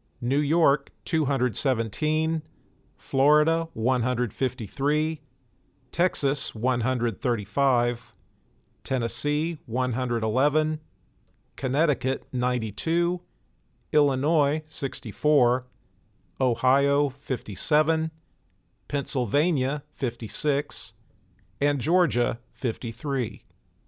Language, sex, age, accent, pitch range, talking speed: English, male, 40-59, American, 120-145 Hz, 50 wpm